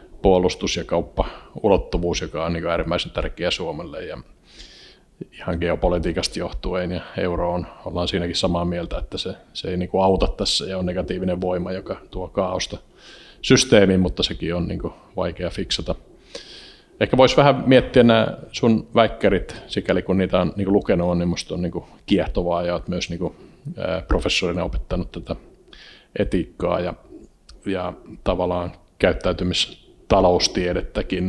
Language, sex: Finnish, male